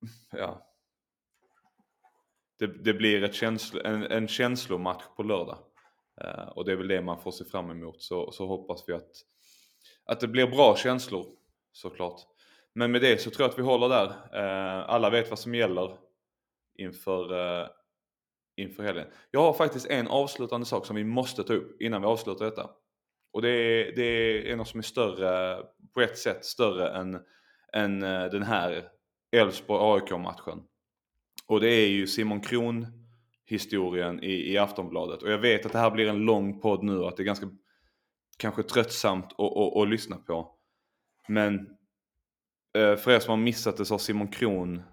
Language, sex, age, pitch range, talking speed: Swedish, male, 20-39, 95-115 Hz, 170 wpm